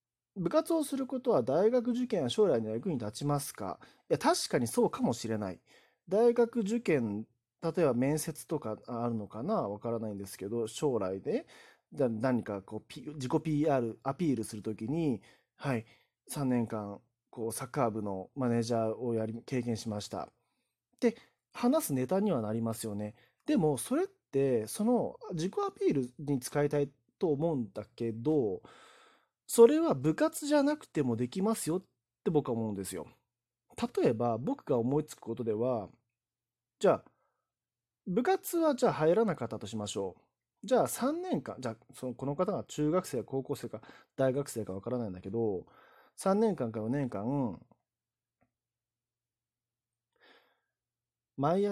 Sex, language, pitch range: male, Japanese, 115-175 Hz